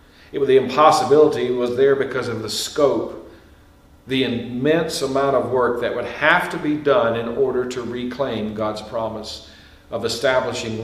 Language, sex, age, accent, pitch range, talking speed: English, male, 50-69, American, 110-140 Hz, 160 wpm